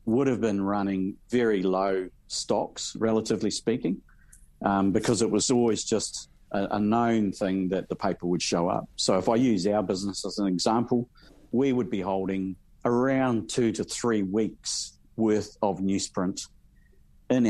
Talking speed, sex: 160 wpm, male